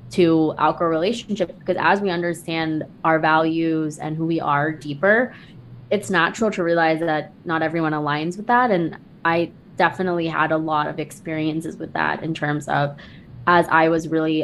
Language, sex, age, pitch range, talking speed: English, female, 20-39, 155-200 Hz, 170 wpm